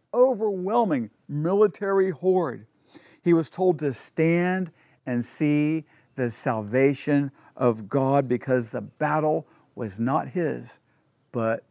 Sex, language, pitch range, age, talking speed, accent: male, English, 125-160 Hz, 50-69, 110 wpm, American